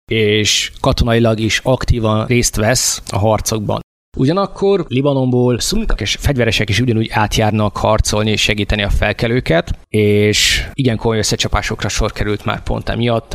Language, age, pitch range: Hungarian, 20-39, 105-115 Hz